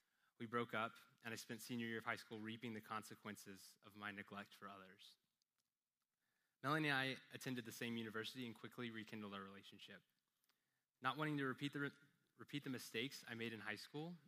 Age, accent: 20-39, American